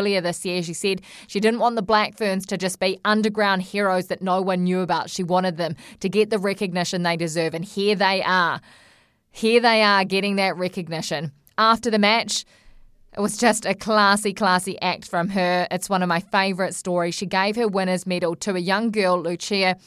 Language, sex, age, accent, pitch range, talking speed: English, female, 20-39, Australian, 175-200 Hz, 205 wpm